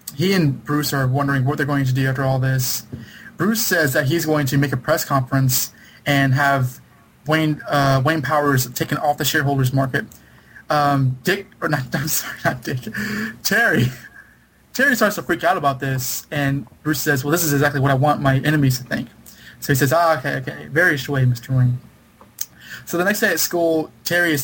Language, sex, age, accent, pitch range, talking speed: English, male, 20-39, American, 130-150 Hz, 200 wpm